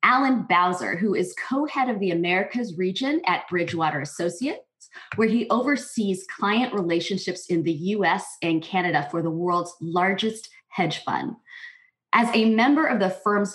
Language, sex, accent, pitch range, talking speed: English, female, American, 175-225 Hz, 150 wpm